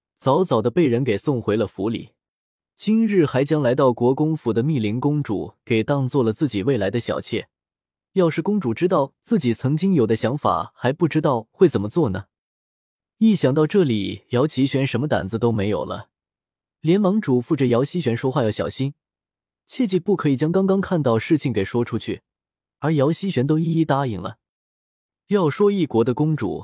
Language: Chinese